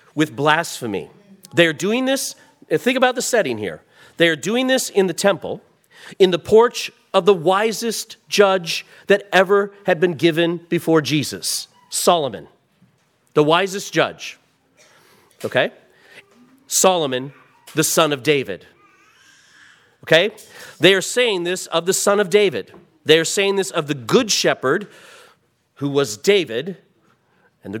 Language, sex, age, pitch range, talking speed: English, male, 40-59, 145-195 Hz, 135 wpm